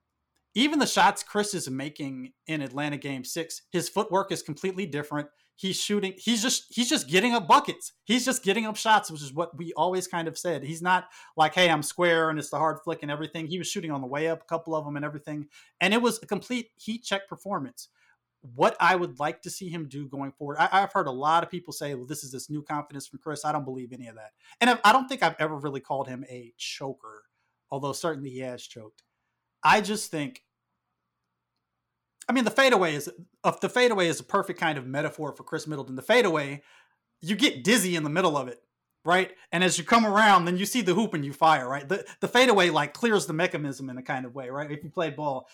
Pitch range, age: 145-195 Hz, 30-49